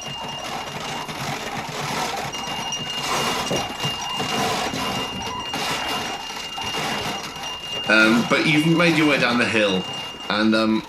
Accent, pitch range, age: British, 95-115 Hz, 40-59